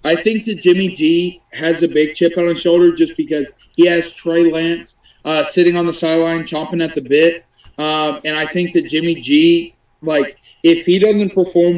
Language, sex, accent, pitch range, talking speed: English, male, American, 155-175 Hz, 200 wpm